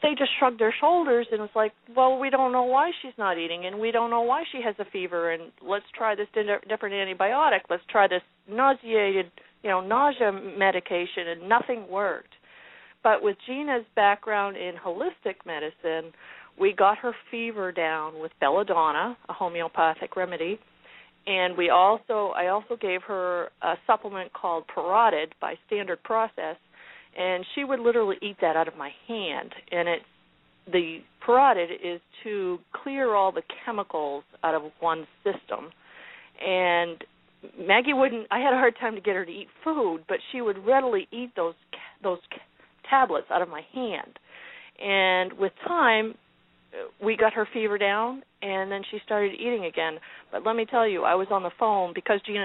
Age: 50-69